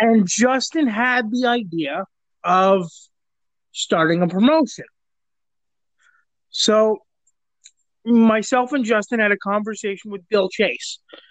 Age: 30-49